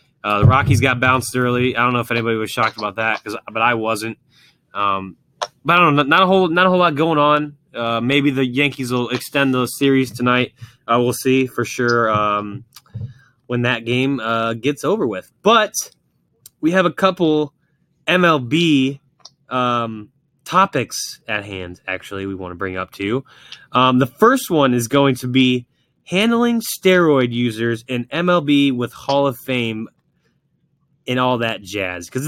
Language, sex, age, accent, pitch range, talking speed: English, male, 20-39, American, 120-150 Hz, 170 wpm